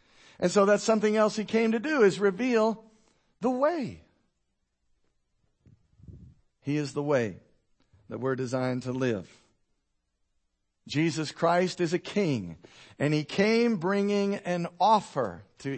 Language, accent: English, American